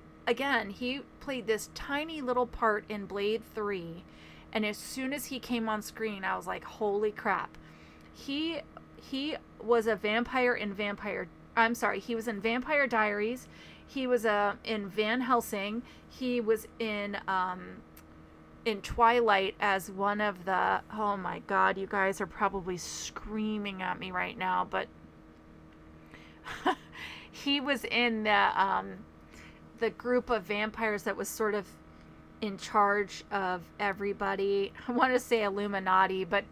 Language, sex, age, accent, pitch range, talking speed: English, female, 30-49, American, 165-230 Hz, 150 wpm